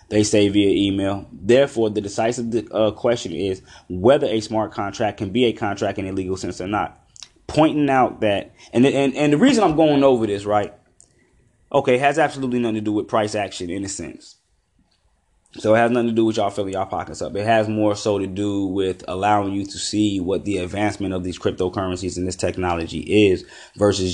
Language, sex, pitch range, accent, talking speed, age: English, male, 90-110 Hz, American, 210 wpm, 20-39